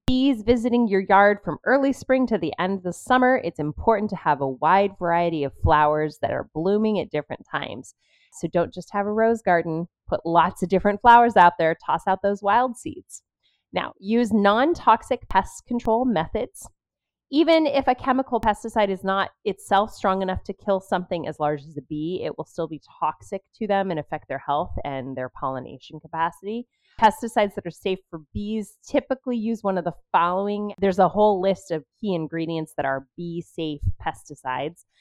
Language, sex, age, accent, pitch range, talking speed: English, female, 30-49, American, 160-225 Hz, 185 wpm